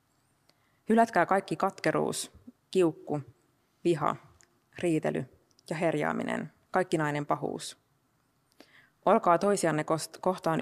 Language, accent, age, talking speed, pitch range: Finnish, native, 20-39, 80 wpm, 135-160 Hz